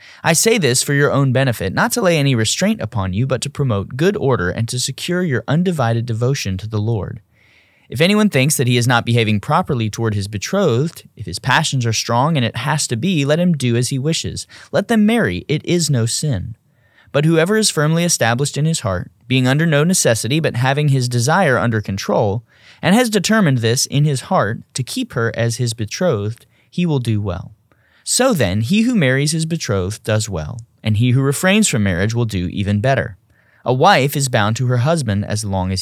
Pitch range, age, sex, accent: 110-155 Hz, 30-49, male, American